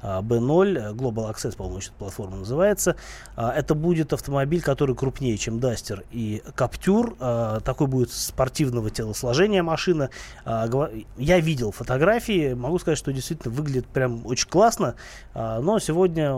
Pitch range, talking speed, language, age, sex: 120-155 Hz, 125 wpm, Russian, 20-39, male